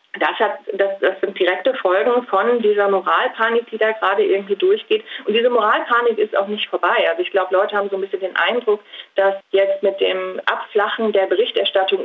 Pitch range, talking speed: 195-270 Hz, 195 wpm